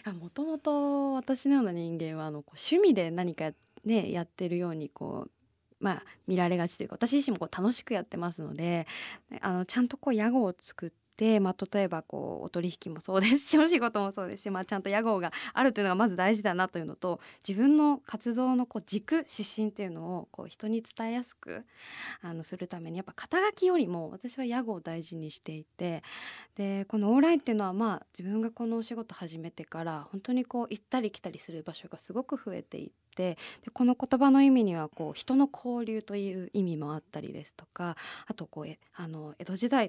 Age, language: 20-39, Japanese